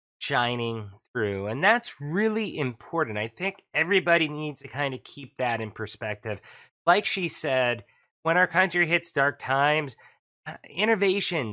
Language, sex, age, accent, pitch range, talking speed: English, male, 30-49, American, 125-180 Hz, 140 wpm